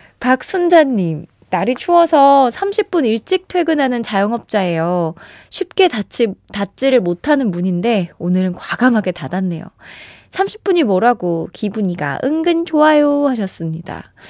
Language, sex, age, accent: Korean, female, 20-39, native